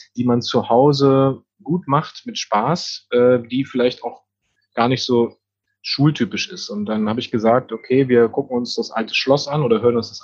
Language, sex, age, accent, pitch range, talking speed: German, male, 30-49, German, 115-150 Hz, 200 wpm